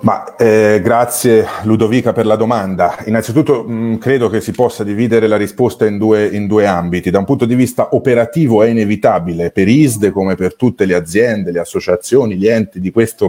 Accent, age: native, 30-49